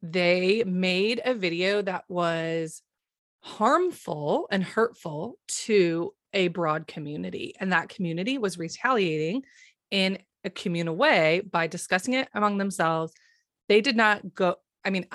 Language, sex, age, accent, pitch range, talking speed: English, female, 30-49, American, 165-205 Hz, 130 wpm